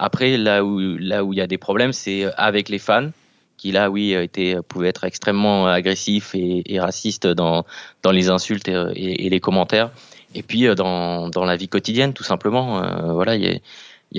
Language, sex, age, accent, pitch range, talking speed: French, male, 20-39, French, 90-105 Hz, 200 wpm